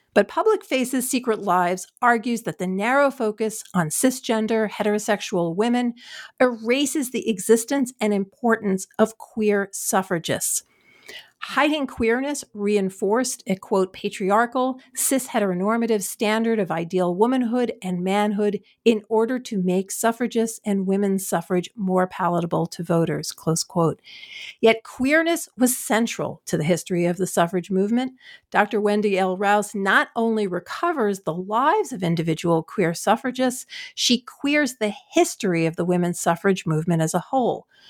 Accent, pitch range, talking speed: American, 185-250 Hz, 135 wpm